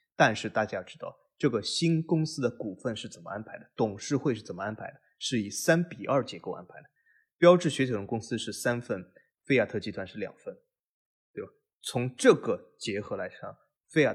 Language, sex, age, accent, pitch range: Chinese, male, 20-39, native, 115-170 Hz